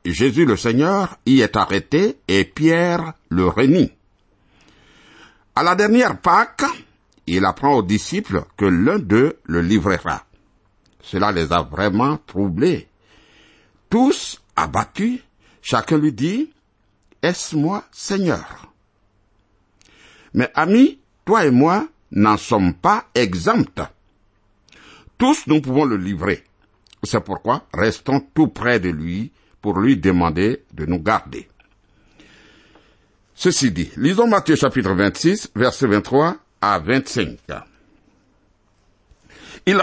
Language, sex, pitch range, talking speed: French, male, 100-170 Hz, 110 wpm